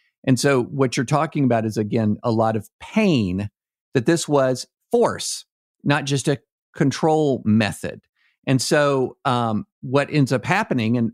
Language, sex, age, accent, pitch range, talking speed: English, male, 50-69, American, 115-145 Hz, 155 wpm